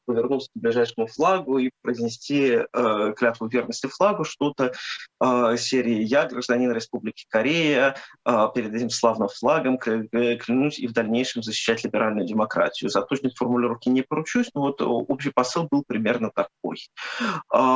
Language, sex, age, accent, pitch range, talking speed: Russian, male, 20-39, native, 120-150 Hz, 140 wpm